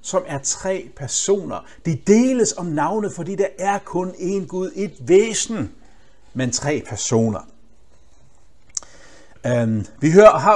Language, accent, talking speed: Danish, native, 130 wpm